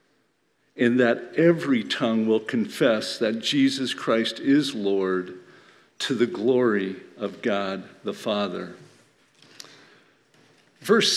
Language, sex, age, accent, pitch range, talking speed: English, male, 50-69, American, 120-170 Hz, 100 wpm